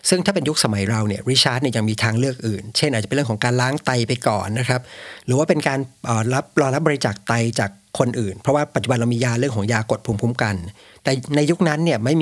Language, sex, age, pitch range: Thai, male, 60-79, 110-140 Hz